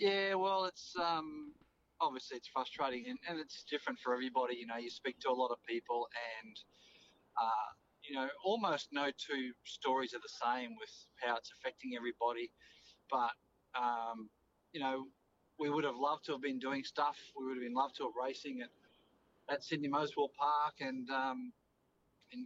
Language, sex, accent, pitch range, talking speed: English, male, Australian, 125-150 Hz, 180 wpm